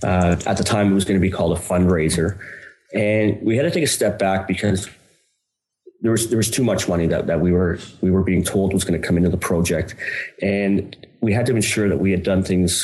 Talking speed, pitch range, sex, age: 250 wpm, 90-105 Hz, male, 30-49